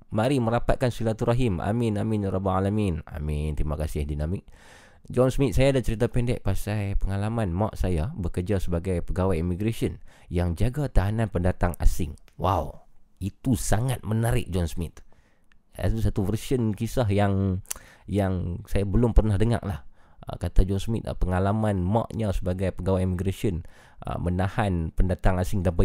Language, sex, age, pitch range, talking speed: Malay, male, 20-39, 90-120 Hz, 135 wpm